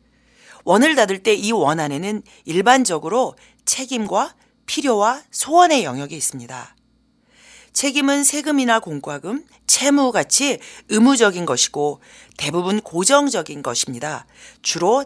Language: Korean